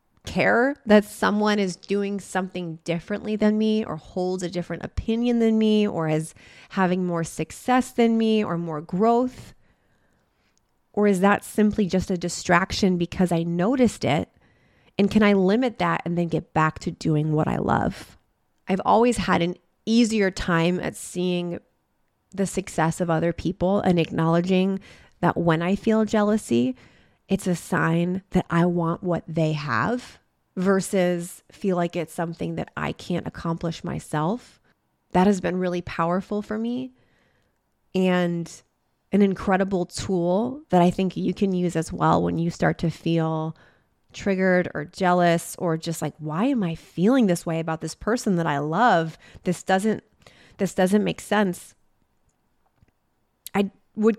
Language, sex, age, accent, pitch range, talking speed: English, female, 20-39, American, 165-205 Hz, 155 wpm